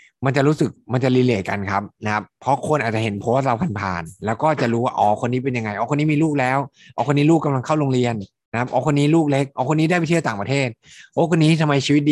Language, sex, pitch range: Thai, male, 105-135 Hz